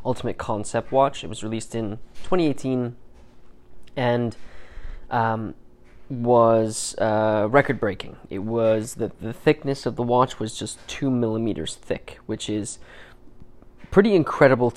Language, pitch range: English, 110-130 Hz